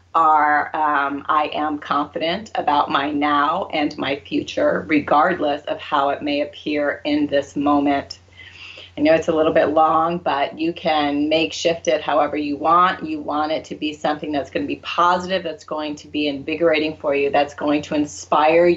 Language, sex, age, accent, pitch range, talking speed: English, female, 30-49, American, 150-170 Hz, 180 wpm